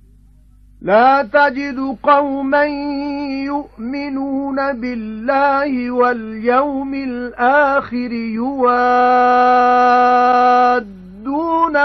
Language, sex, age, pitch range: English, male, 40-59, 225-275 Hz